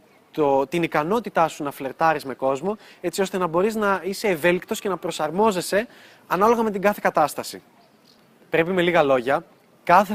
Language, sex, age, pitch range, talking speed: Greek, male, 20-39, 165-230 Hz, 165 wpm